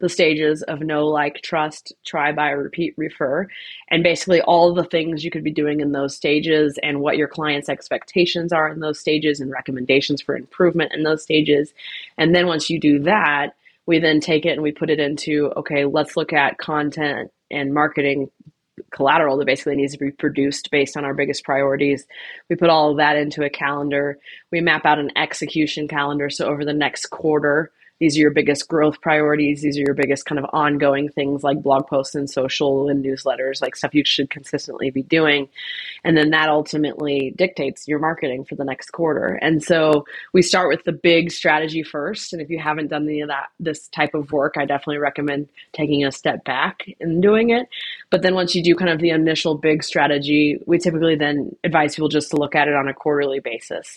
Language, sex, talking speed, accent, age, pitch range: English, female, 210 wpm, American, 20-39, 145-160 Hz